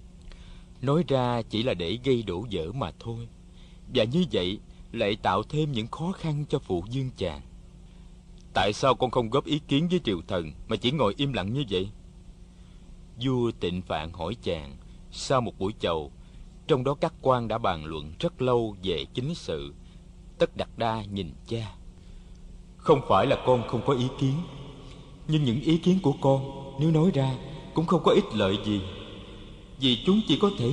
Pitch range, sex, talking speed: 110-160 Hz, male, 185 wpm